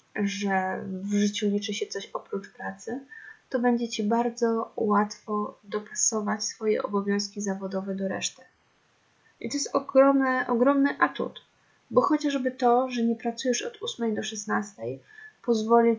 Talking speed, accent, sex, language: 135 wpm, native, female, Polish